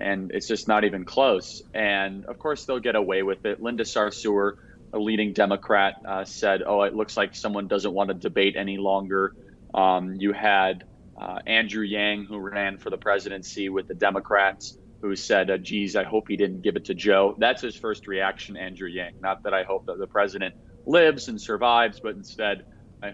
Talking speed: 200 wpm